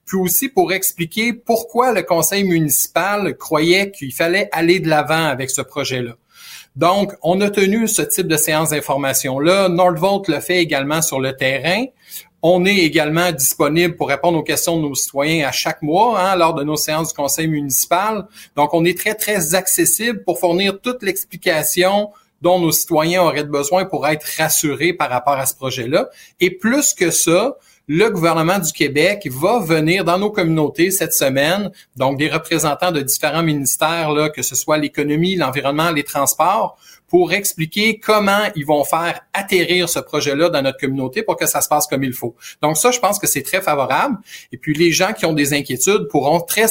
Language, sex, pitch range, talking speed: French, male, 145-185 Hz, 185 wpm